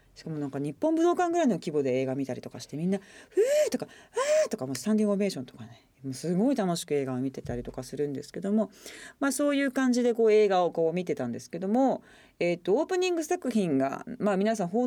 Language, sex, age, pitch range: Japanese, female, 40-59, 140-240 Hz